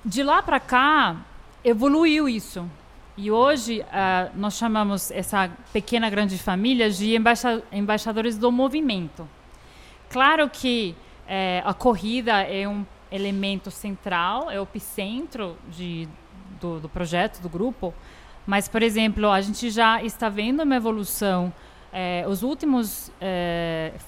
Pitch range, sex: 185-245 Hz, female